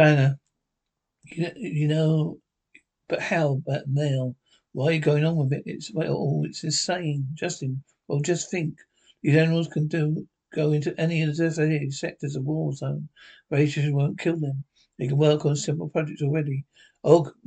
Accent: British